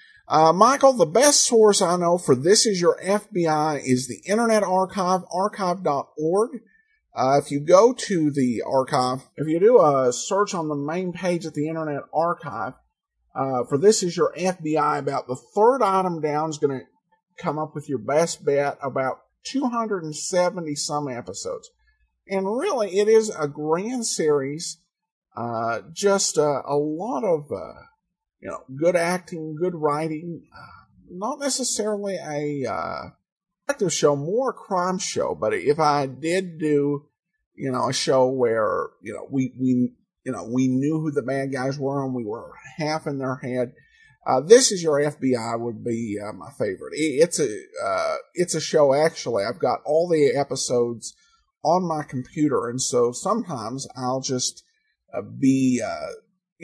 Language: English